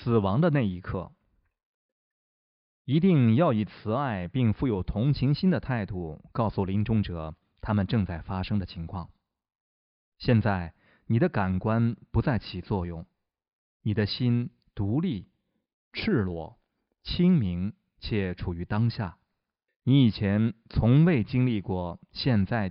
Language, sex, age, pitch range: Chinese, male, 20-39, 95-125 Hz